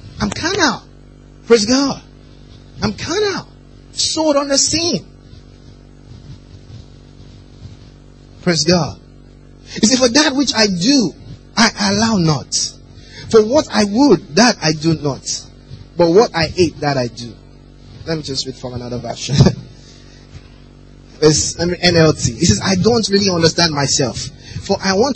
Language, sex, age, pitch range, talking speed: English, male, 30-49, 130-195 Hz, 135 wpm